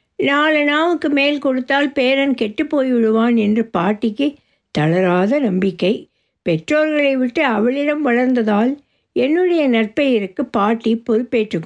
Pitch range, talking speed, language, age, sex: 220-285 Hz, 95 wpm, Tamil, 60-79, female